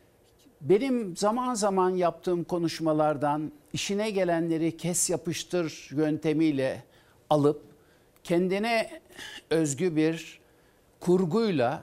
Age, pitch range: 60-79, 140-185 Hz